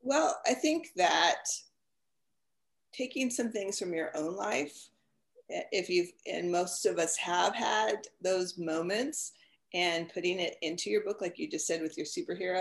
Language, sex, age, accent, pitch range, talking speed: English, female, 40-59, American, 175-275 Hz, 160 wpm